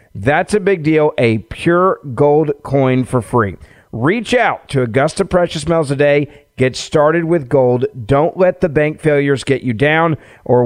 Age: 40-59